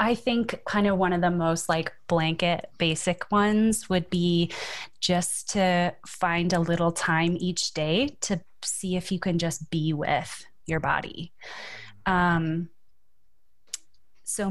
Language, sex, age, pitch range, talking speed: English, female, 20-39, 165-190 Hz, 140 wpm